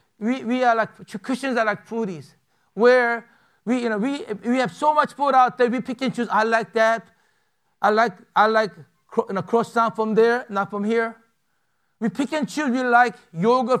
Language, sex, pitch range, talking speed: English, male, 205-255 Hz, 210 wpm